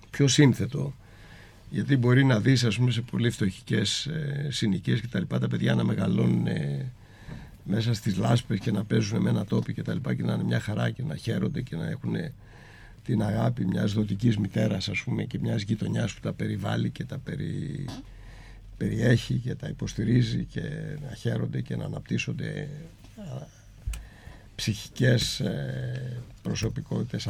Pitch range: 105-140 Hz